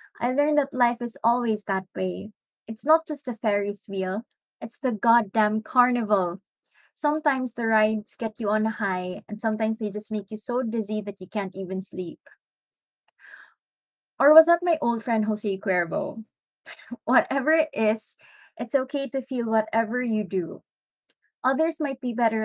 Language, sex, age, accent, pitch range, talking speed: English, female, 20-39, Filipino, 210-255 Hz, 160 wpm